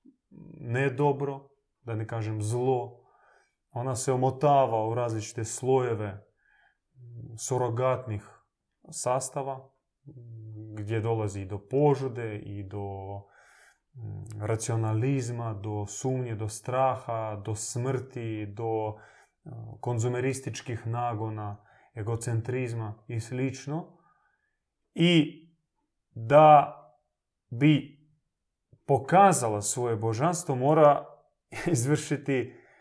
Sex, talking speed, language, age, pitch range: male, 75 wpm, Croatian, 20-39, 115-145 Hz